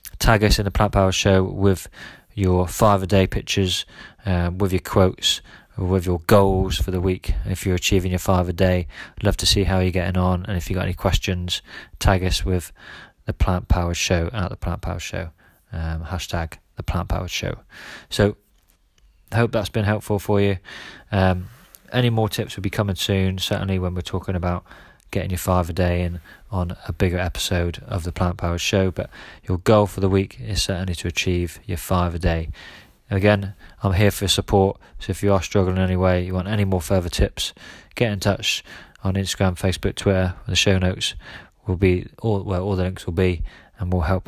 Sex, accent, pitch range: male, British, 90-100 Hz